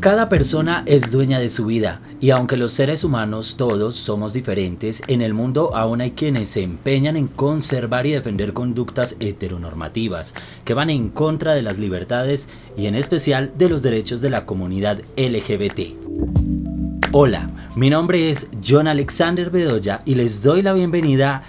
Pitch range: 105-145 Hz